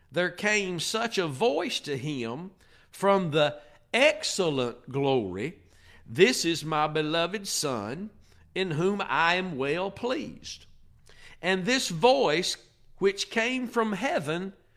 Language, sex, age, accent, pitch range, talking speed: English, male, 50-69, American, 155-220 Hz, 120 wpm